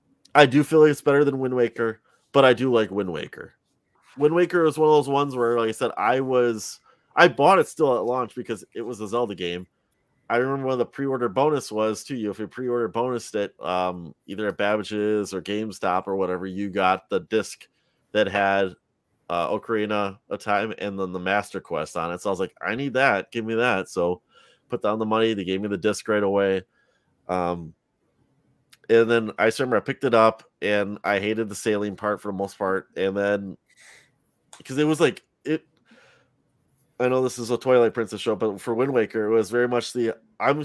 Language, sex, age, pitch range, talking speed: English, male, 30-49, 100-125 Hz, 215 wpm